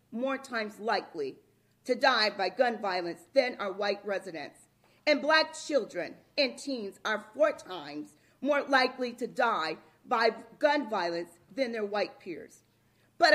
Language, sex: English, female